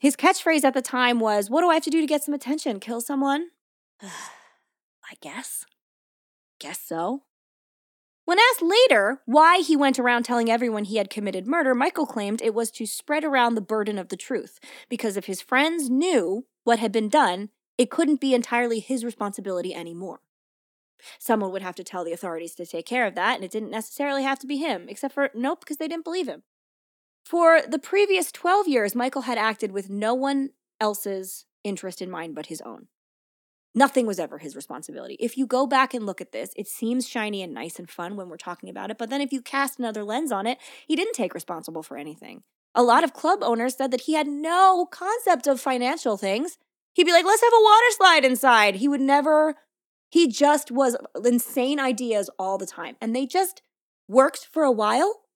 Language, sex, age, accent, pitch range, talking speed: English, female, 20-39, American, 215-305 Hz, 205 wpm